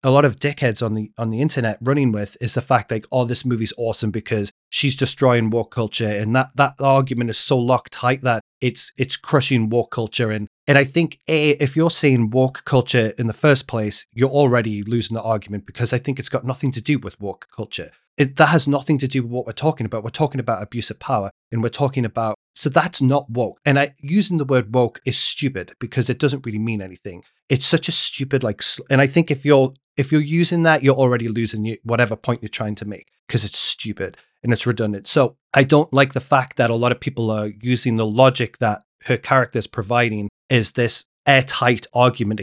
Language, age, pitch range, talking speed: English, 30-49, 115-140 Hz, 225 wpm